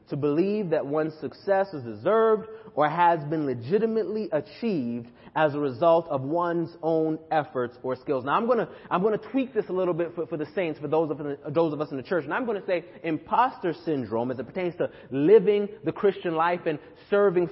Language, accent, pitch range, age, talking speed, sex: English, American, 145-195 Hz, 30-49, 220 wpm, male